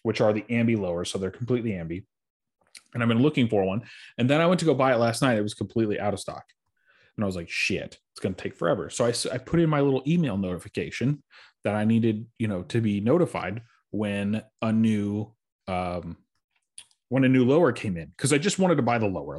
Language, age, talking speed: English, 30-49, 235 wpm